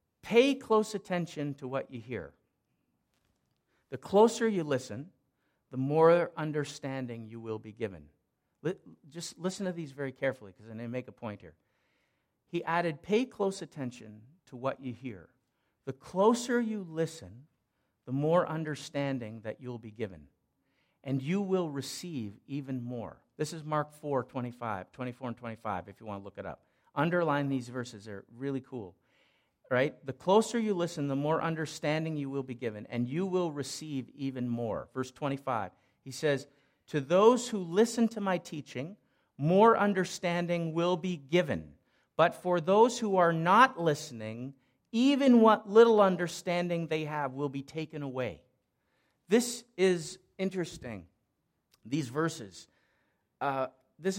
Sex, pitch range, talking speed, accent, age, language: male, 125-175 Hz, 150 wpm, American, 50-69, English